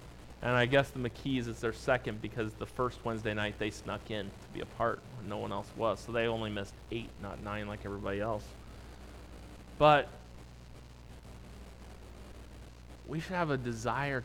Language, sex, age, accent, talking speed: English, male, 30-49, American, 175 wpm